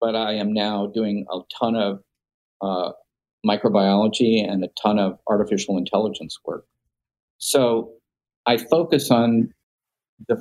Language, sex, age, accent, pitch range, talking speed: English, male, 50-69, American, 105-125 Hz, 125 wpm